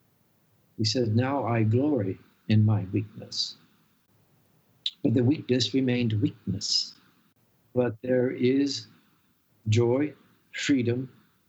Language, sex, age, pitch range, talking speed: English, male, 60-79, 110-130 Hz, 95 wpm